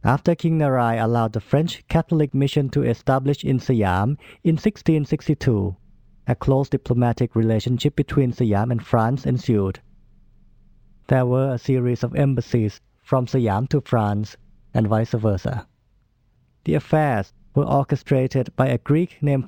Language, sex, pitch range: Thai, male, 115-145 Hz